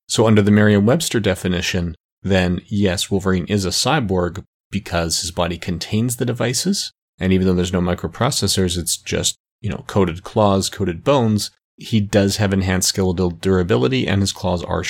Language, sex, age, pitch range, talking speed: English, male, 30-49, 90-105 Hz, 165 wpm